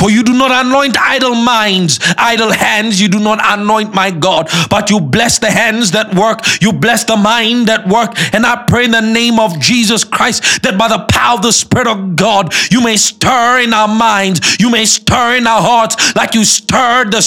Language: English